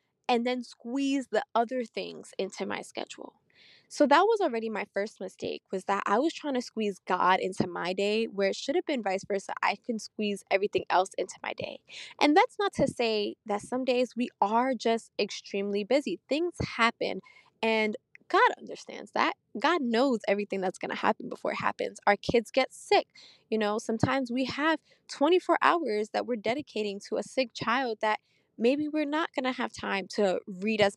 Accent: American